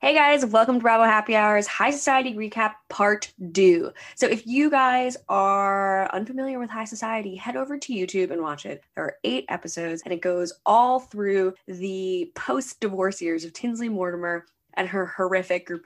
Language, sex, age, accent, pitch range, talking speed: English, female, 10-29, American, 175-225 Hz, 180 wpm